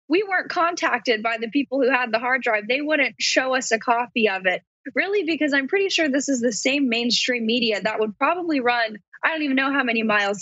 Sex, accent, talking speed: female, American, 235 wpm